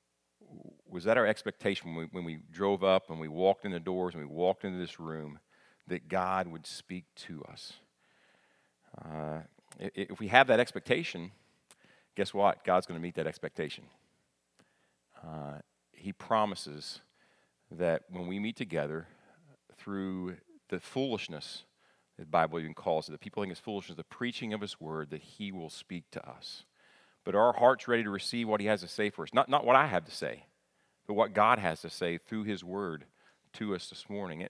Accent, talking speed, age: American, 190 wpm, 40-59